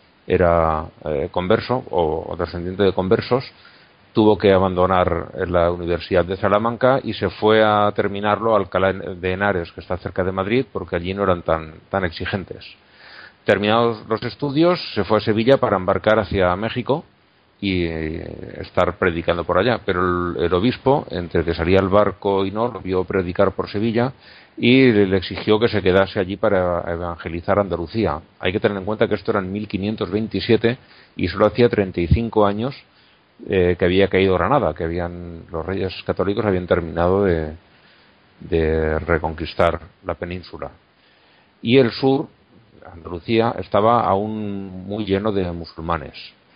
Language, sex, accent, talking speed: Spanish, male, Spanish, 155 wpm